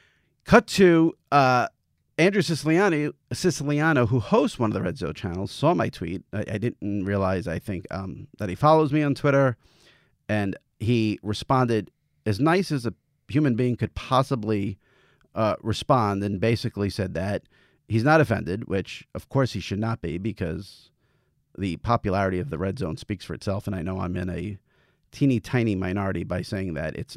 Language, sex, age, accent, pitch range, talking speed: English, male, 40-59, American, 100-130 Hz, 175 wpm